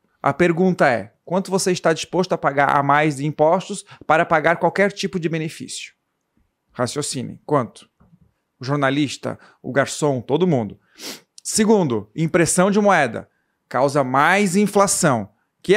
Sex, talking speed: male, 135 wpm